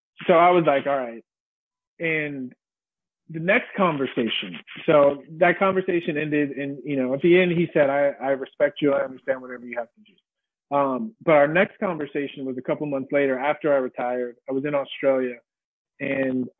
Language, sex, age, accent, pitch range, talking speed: English, male, 30-49, American, 130-155 Hz, 190 wpm